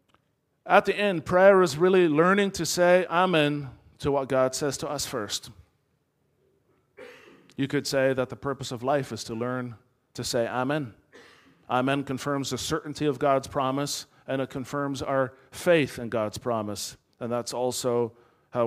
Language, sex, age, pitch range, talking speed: English, male, 40-59, 125-160 Hz, 160 wpm